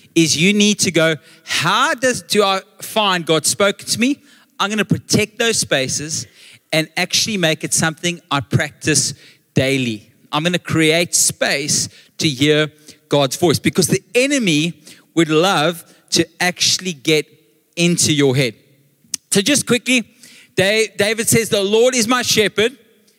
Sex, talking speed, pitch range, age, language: male, 145 wpm, 155-205 Hz, 30-49, English